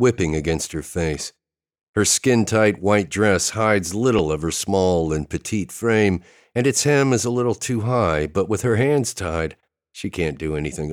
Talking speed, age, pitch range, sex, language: 180 wpm, 50-69, 80-110 Hz, male, English